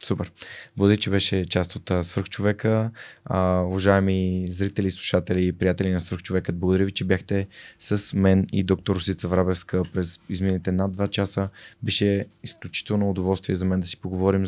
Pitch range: 90-100 Hz